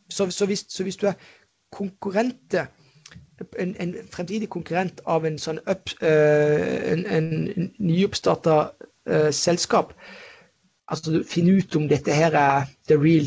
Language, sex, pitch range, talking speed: English, male, 155-190 Hz, 140 wpm